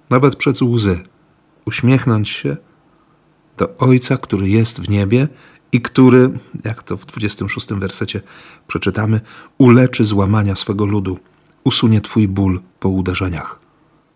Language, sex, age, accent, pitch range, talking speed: Polish, male, 40-59, native, 100-130 Hz, 120 wpm